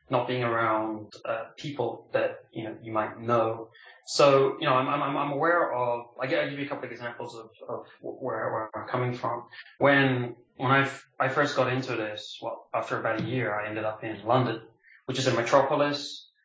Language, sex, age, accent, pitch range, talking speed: English, male, 20-39, British, 110-135 Hz, 215 wpm